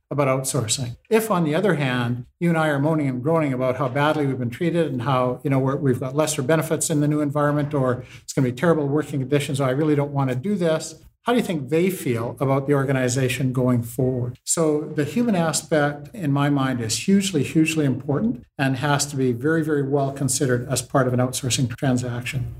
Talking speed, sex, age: 220 wpm, male, 50-69